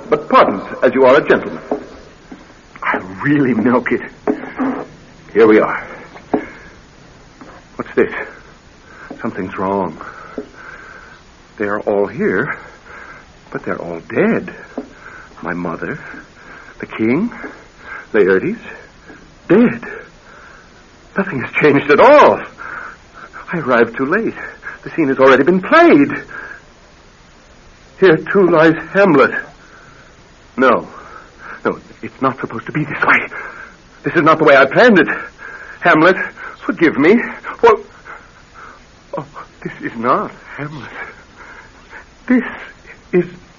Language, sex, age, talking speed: English, male, 60-79, 105 wpm